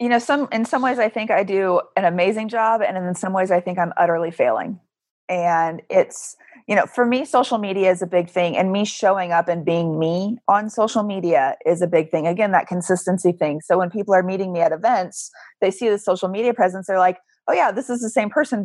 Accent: American